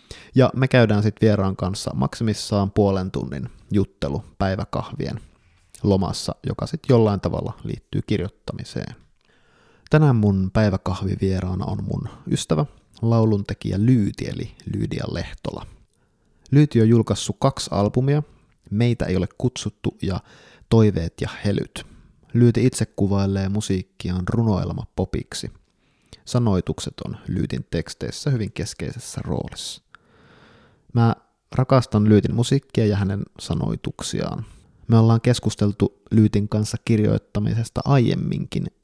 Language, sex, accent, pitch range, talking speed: Finnish, male, native, 100-120 Hz, 110 wpm